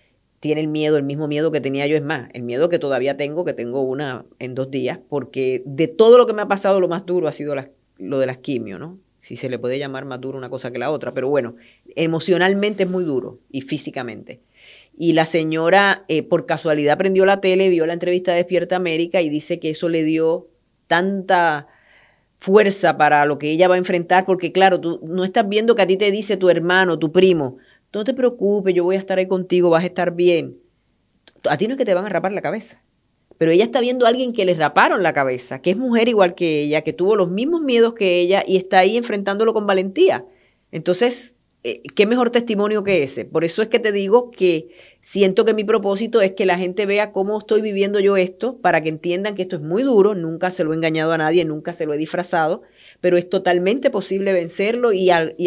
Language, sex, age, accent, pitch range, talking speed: Spanish, female, 30-49, American, 155-195 Hz, 230 wpm